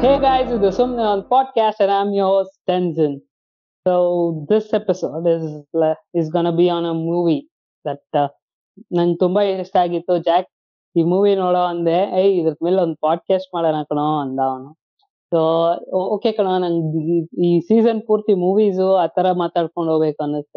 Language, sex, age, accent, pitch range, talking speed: Kannada, female, 20-39, native, 155-195 Hz, 185 wpm